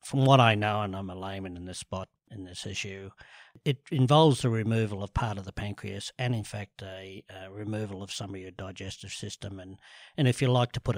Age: 60-79